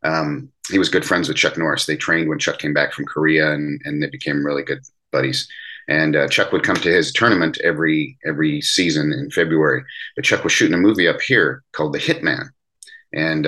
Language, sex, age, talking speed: English, male, 40-59, 215 wpm